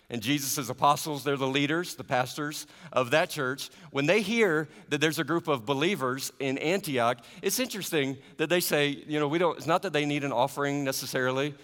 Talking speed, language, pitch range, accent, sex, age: 200 wpm, English, 120-160 Hz, American, male, 50-69